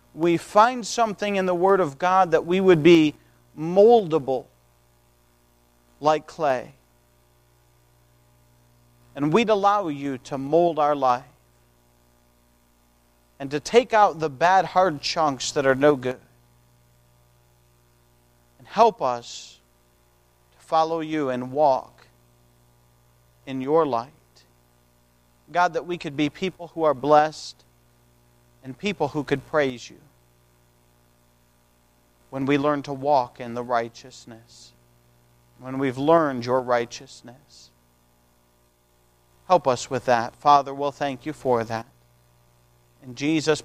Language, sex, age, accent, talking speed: English, male, 40-59, American, 120 wpm